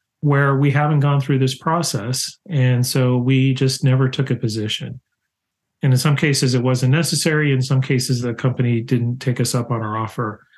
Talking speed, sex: 195 wpm, male